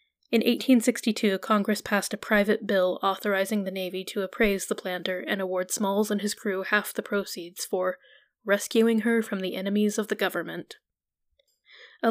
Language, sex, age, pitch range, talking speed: English, female, 10-29, 190-225 Hz, 165 wpm